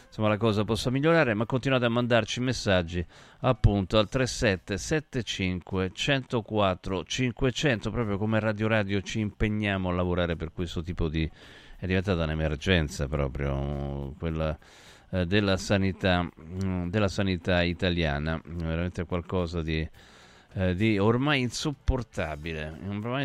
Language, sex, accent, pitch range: Italian, male, native, 85-120 Hz